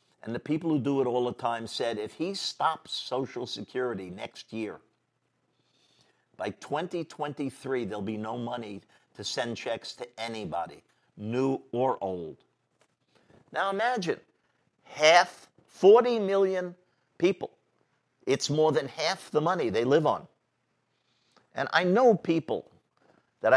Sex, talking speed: male, 130 wpm